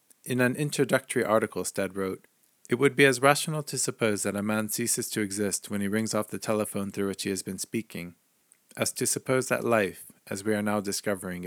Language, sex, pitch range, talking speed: English, male, 95-120 Hz, 215 wpm